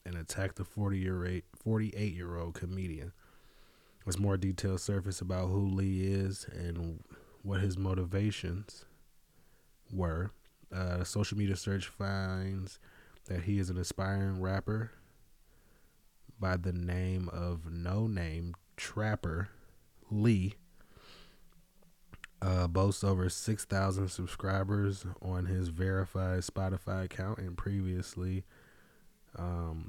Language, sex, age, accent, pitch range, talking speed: English, male, 20-39, American, 90-100 Hz, 110 wpm